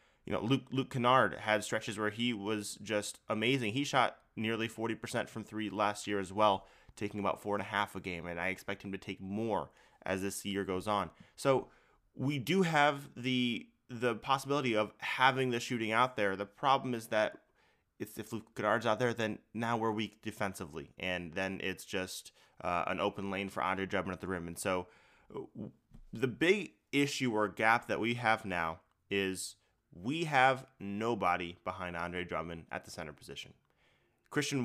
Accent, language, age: American, English, 20-39